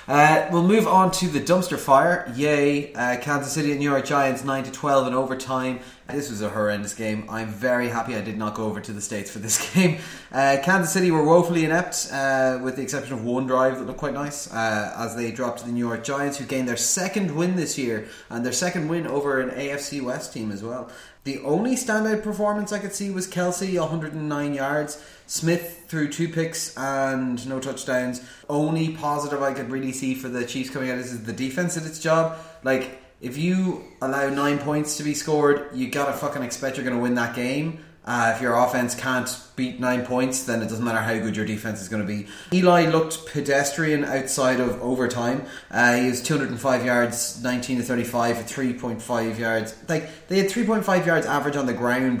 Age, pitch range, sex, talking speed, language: 20-39, 125-155 Hz, male, 210 wpm, English